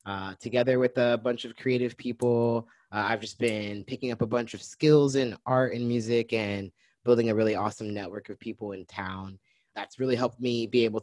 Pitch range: 100-125 Hz